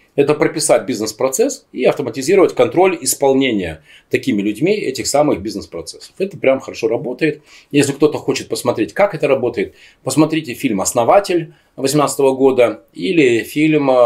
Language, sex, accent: Russian, male, native